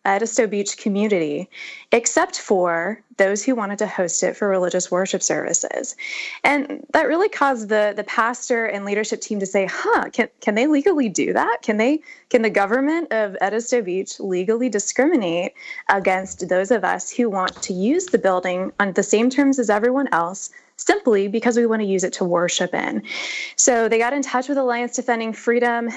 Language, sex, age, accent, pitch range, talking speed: English, female, 20-39, American, 195-255 Hz, 185 wpm